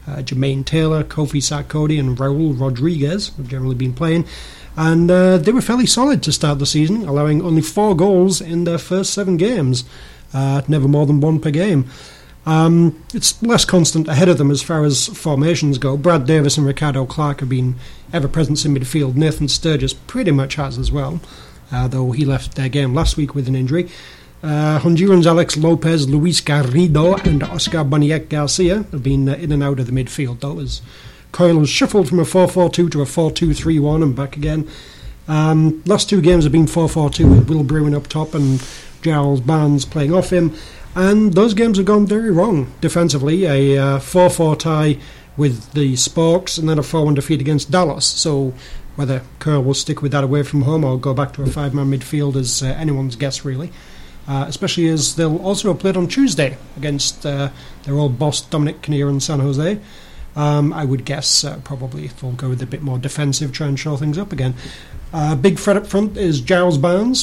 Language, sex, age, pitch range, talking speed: English, male, 30-49, 140-170 Hz, 195 wpm